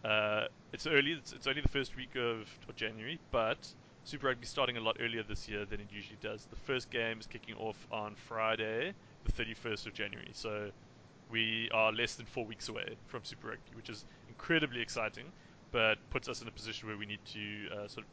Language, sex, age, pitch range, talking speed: English, male, 20-39, 110-125 Hz, 215 wpm